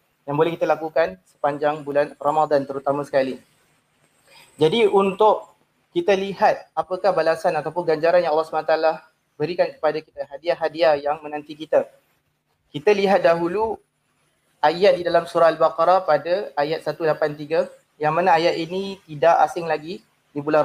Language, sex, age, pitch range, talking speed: Malay, male, 30-49, 155-195 Hz, 135 wpm